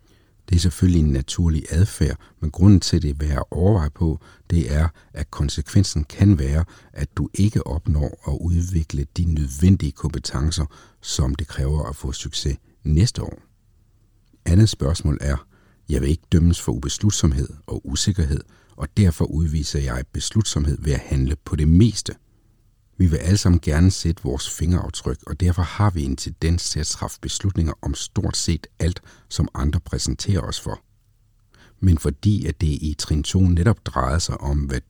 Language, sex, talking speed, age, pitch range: Danish, male, 165 wpm, 60-79, 75-95 Hz